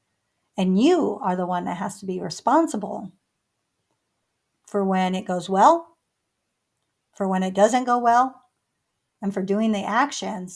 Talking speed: 150 wpm